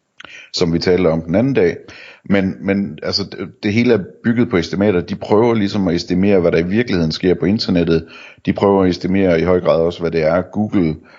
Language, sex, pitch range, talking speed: Danish, male, 85-100 Hz, 220 wpm